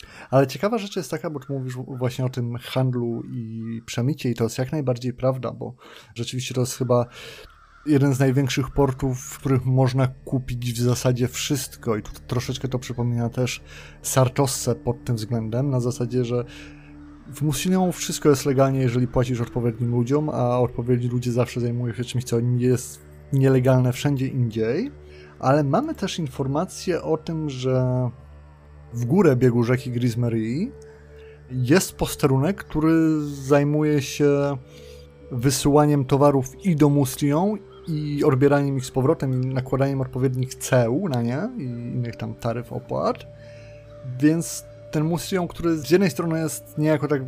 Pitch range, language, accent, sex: 120-150 Hz, Polish, native, male